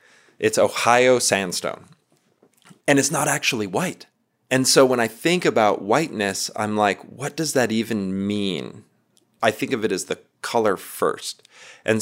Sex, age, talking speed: male, 30-49, 155 wpm